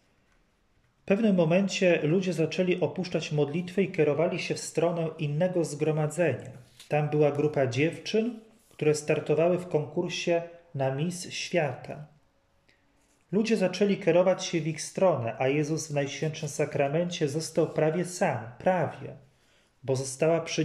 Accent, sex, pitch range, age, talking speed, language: native, male, 140-175 Hz, 30-49, 130 wpm, Polish